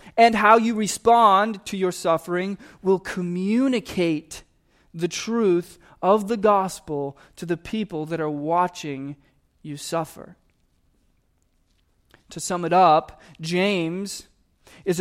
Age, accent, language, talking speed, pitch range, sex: 20-39, American, English, 110 wpm, 145-205 Hz, male